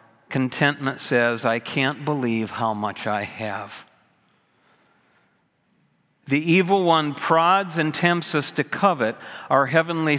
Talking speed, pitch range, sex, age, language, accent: 120 wpm, 125-170 Hz, male, 50-69, English, American